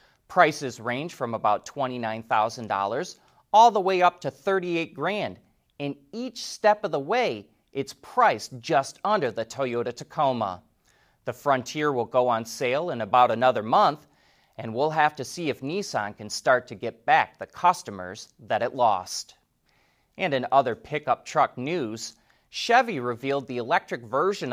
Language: English